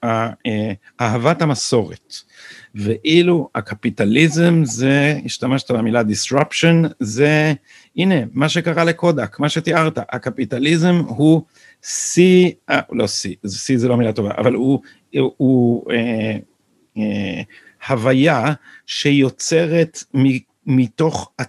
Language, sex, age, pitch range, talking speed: Hebrew, male, 50-69, 115-155 Hz, 100 wpm